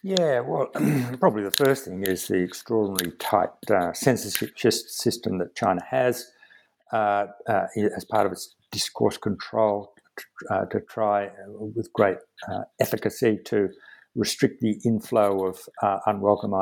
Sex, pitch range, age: male, 100-125 Hz, 60-79